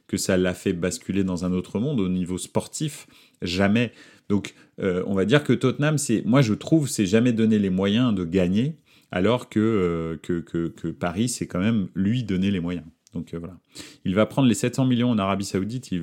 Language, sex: French, male